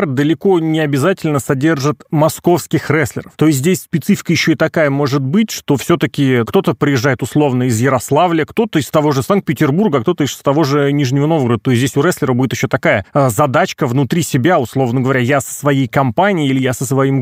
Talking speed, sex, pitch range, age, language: 190 wpm, male, 140-195 Hz, 30-49, Russian